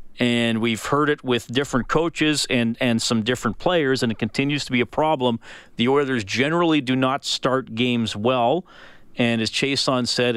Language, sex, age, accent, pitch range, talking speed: English, male, 40-59, American, 110-125 Hz, 180 wpm